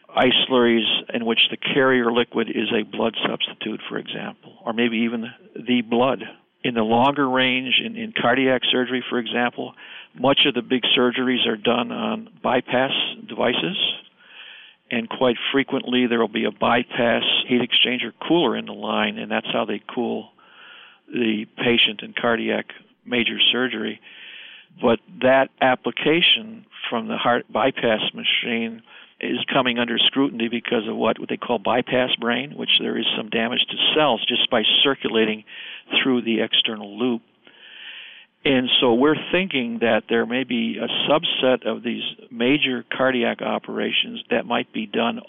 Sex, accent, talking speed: male, American, 150 wpm